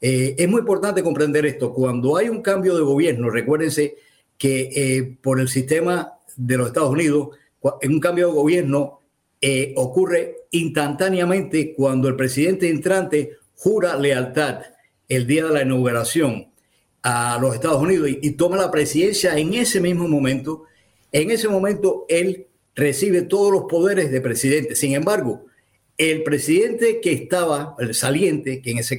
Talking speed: 150 wpm